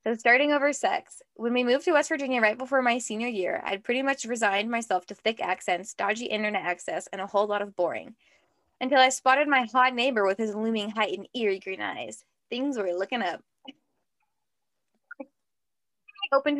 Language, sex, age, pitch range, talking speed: English, female, 10-29, 200-260 Hz, 185 wpm